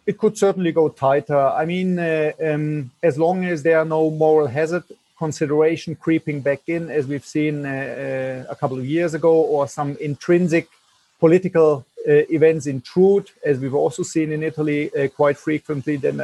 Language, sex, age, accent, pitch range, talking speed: English, male, 40-59, German, 135-160 Hz, 175 wpm